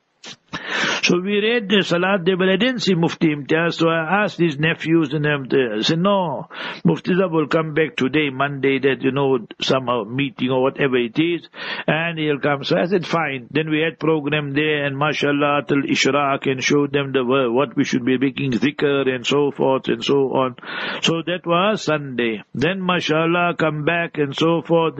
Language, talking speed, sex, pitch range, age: English, 190 wpm, male, 140-165 Hz, 60-79